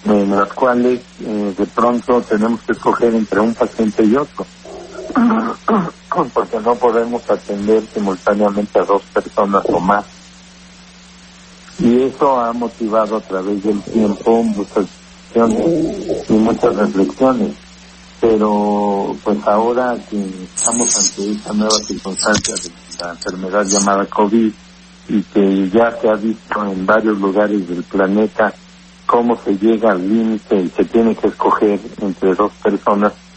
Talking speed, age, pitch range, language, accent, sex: 135 wpm, 60-79, 100-115 Hz, Spanish, Mexican, male